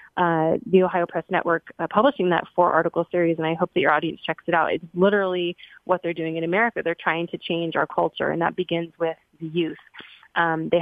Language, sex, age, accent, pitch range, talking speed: English, female, 20-39, American, 170-205 Hz, 220 wpm